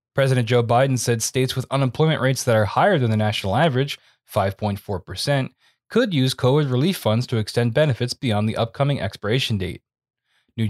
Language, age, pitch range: English, 20-39, 110-135 Hz